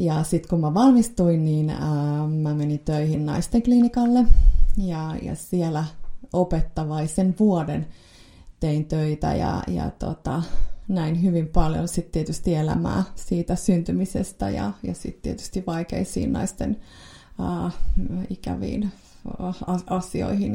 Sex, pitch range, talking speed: female, 120-185 Hz, 115 wpm